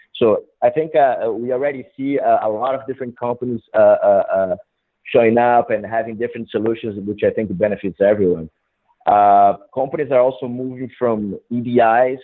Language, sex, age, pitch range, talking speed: English, male, 30-49, 100-120 Hz, 160 wpm